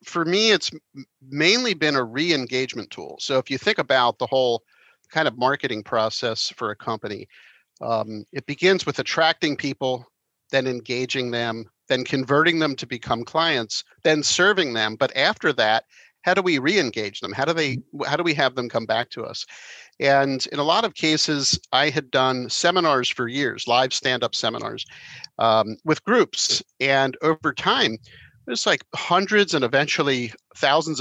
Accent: American